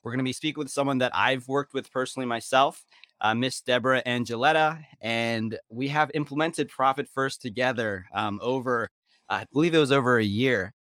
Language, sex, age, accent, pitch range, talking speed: English, male, 20-39, American, 110-140 Hz, 180 wpm